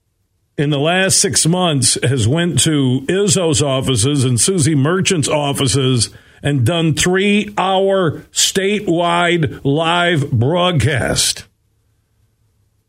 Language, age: English, 50-69